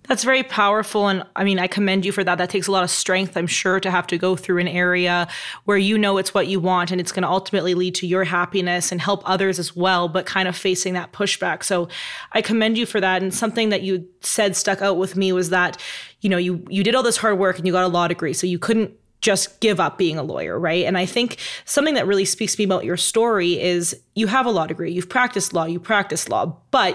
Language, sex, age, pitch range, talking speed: English, female, 20-39, 180-210 Hz, 265 wpm